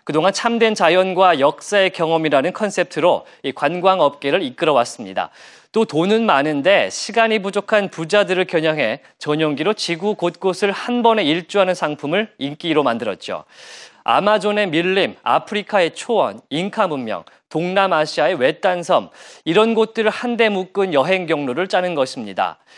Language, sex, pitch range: Korean, male, 170-215 Hz